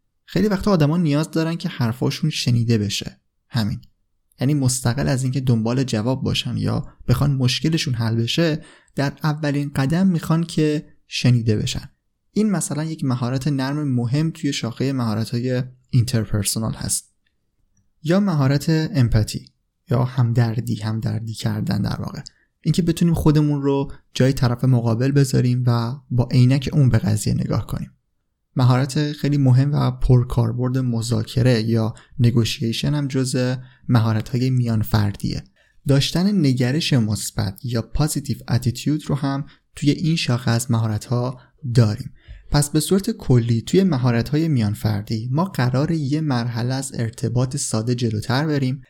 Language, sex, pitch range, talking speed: Persian, male, 120-145 Hz, 135 wpm